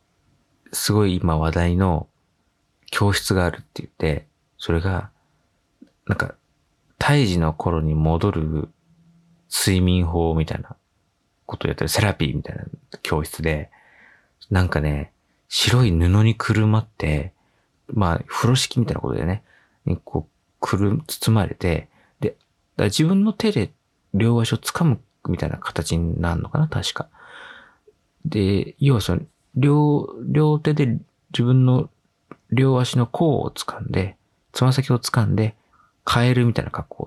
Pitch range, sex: 90-135 Hz, male